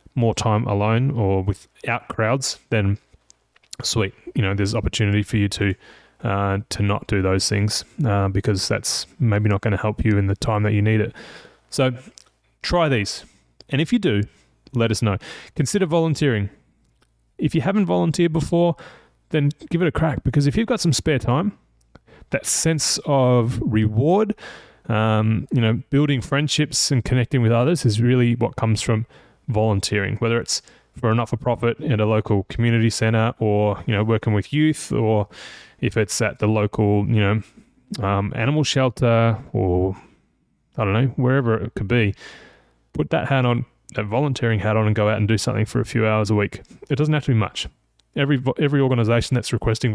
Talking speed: 180 wpm